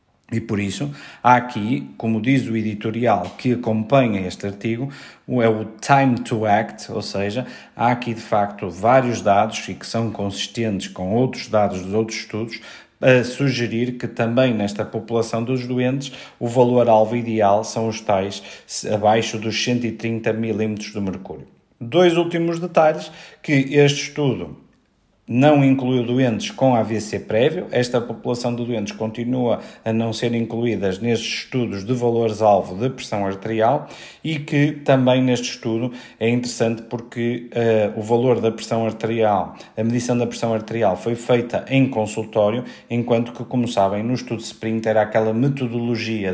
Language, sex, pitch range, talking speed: Portuguese, male, 110-125 Hz, 155 wpm